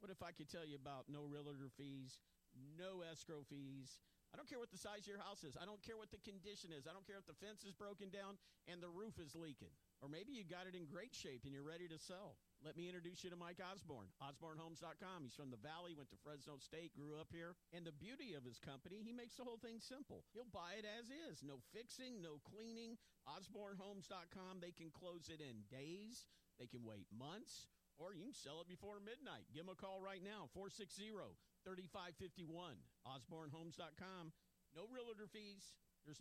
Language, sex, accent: English, male, American